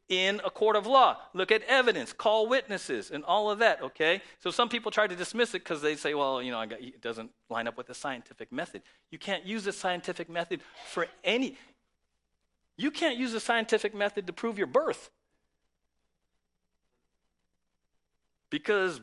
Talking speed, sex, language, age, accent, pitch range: 175 wpm, male, English, 40-59, American, 140-225 Hz